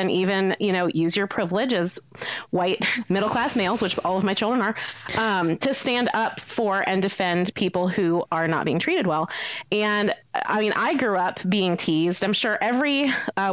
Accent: American